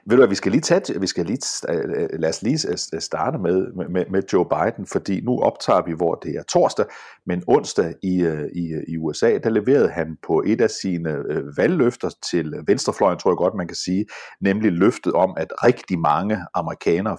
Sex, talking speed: male, 180 wpm